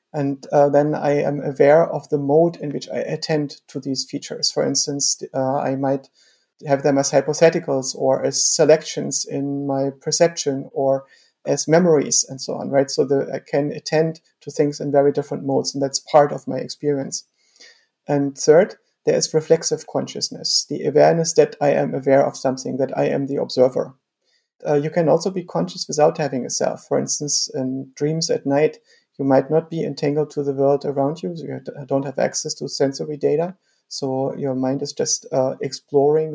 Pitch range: 140-160 Hz